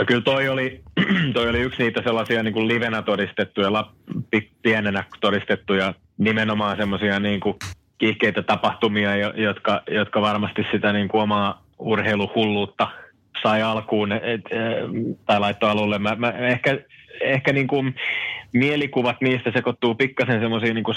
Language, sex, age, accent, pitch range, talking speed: Finnish, male, 30-49, native, 100-120 Hz, 135 wpm